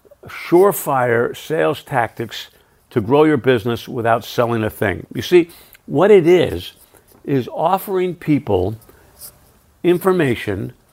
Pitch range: 120-155 Hz